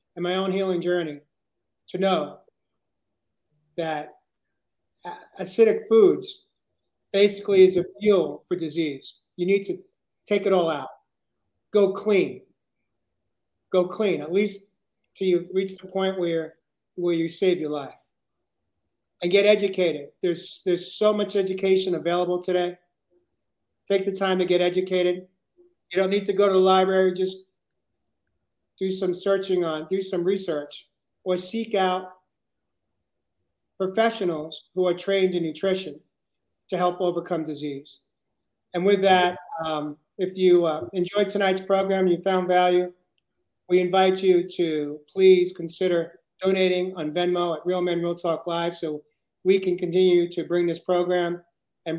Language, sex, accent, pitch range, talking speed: English, male, American, 170-190 Hz, 140 wpm